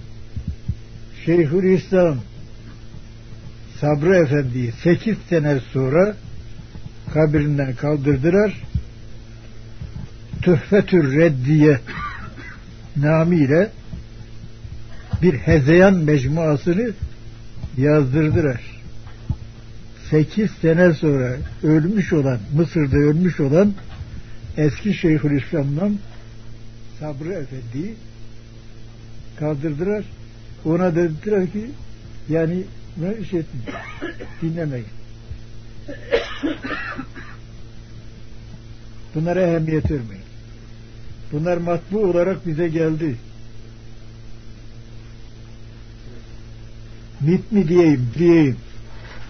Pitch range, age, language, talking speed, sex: 115-165 Hz, 60-79, Turkish, 55 wpm, male